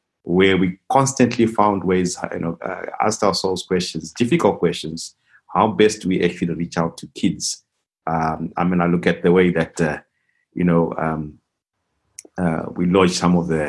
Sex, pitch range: male, 85-105 Hz